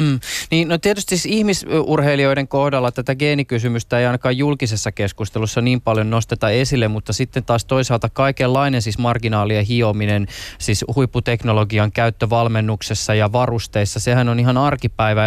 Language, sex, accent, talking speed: Finnish, male, native, 135 wpm